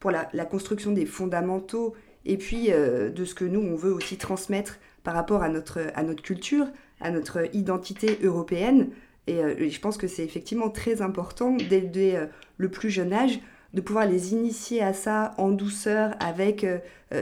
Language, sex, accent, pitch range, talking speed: French, female, French, 180-225 Hz, 185 wpm